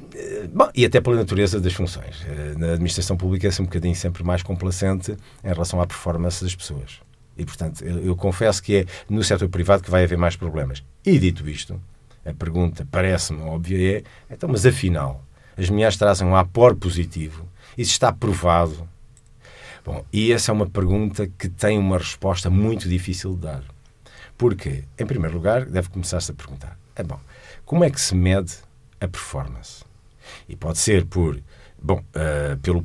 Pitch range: 85-110 Hz